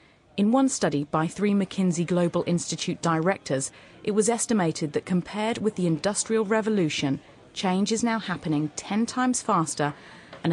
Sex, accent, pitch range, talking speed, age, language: female, British, 155-205 Hz, 150 wpm, 30-49, English